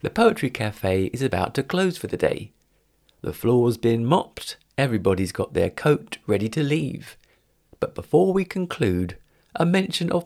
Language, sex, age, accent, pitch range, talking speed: English, male, 40-59, British, 100-155 Hz, 165 wpm